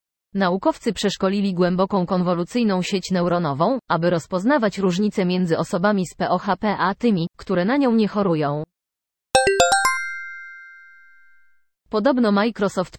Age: 20-39